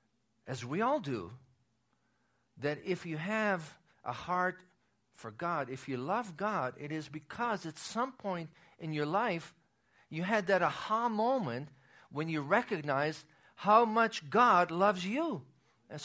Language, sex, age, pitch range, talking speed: English, male, 50-69, 130-195 Hz, 145 wpm